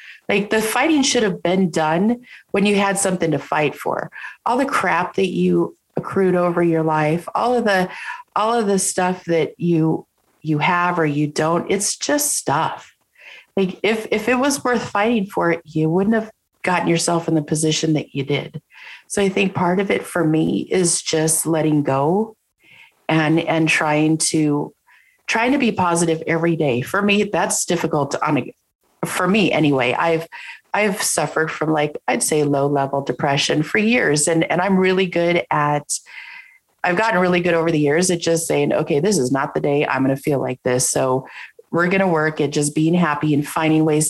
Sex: female